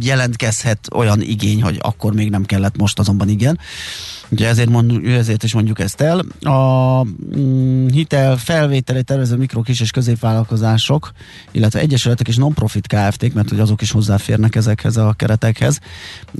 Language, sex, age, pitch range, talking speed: Hungarian, male, 30-49, 105-125 Hz, 145 wpm